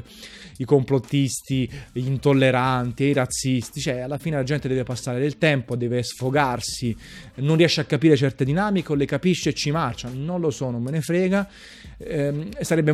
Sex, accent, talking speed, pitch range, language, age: male, native, 170 wpm, 130-160 Hz, Italian, 30-49